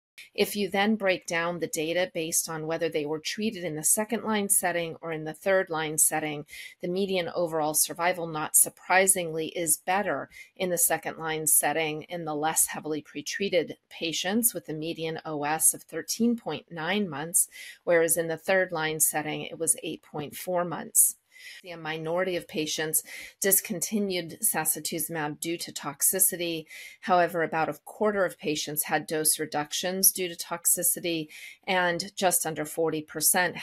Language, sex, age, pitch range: English, female, 40-59, 155-180 Hz